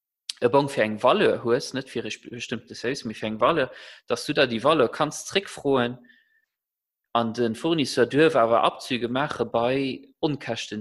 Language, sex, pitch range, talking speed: English, male, 110-130 Hz, 170 wpm